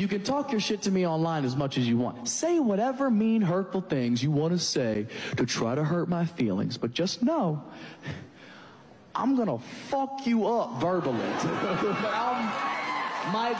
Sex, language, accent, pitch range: male, English, American, 150-235 Hz